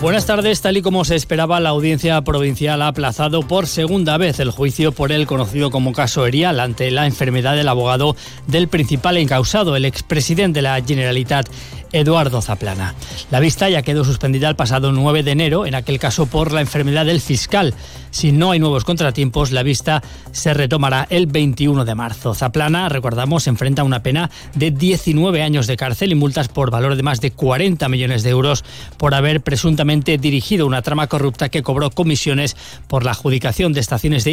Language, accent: Spanish, Spanish